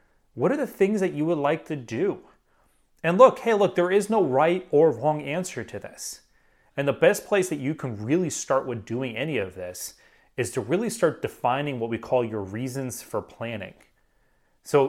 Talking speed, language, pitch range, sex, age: 200 wpm, English, 110-145 Hz, male, 30-49